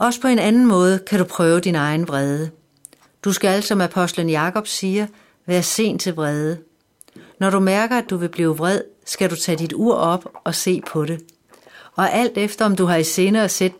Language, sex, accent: Danish, female, native